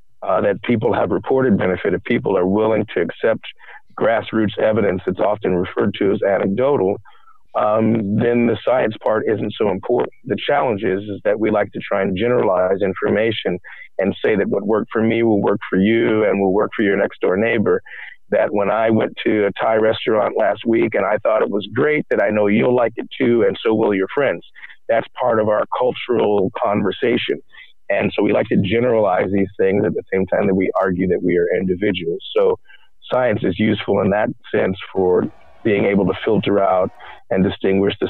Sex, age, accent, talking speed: male, 50-69, American, 200 wpm